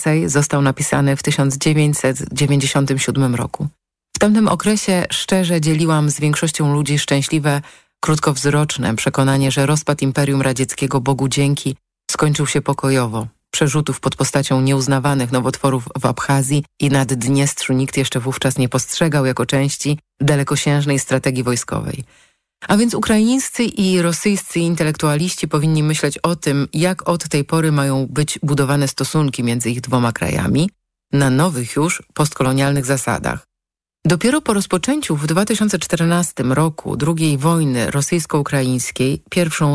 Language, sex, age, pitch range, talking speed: Polish, female, 30-49, 135-155 Hz, 125 wpm